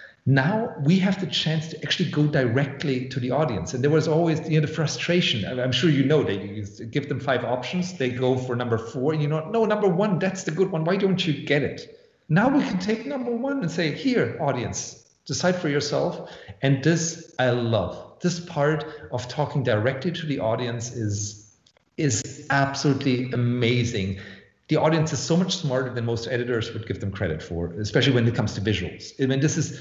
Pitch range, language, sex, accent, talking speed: 120-155 Hz, English, male, German, 205 wpm